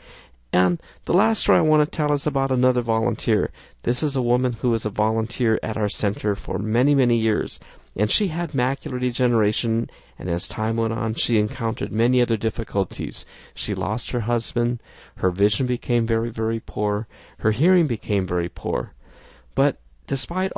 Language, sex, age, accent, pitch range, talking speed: English, male, 50-69, American, 110-155 Hz, 170 wpm